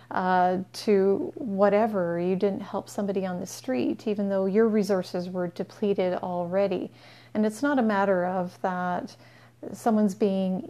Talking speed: 150 wpm